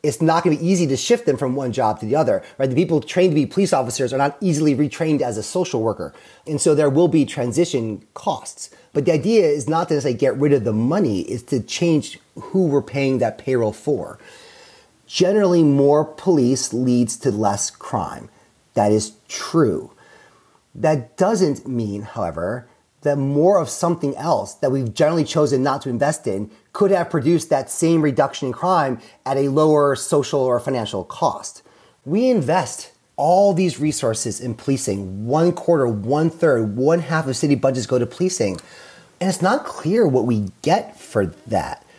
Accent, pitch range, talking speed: American, 130-175 Hz, 185 wpm